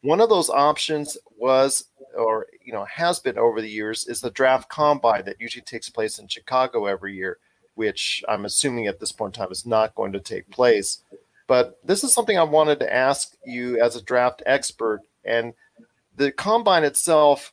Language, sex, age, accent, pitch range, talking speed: English, male, 40-59, American, 110-140 Hz, 190 wpm